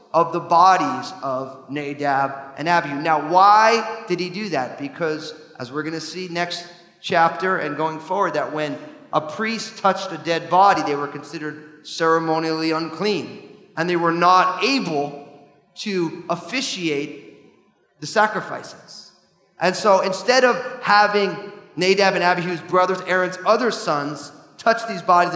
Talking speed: 140 wpm